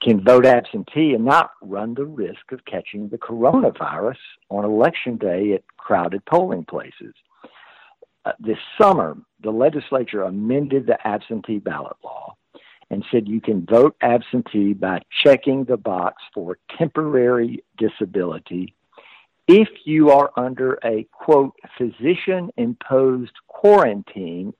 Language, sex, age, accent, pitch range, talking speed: English, male, 60-79, American, 110-140 Hz, 120 wpm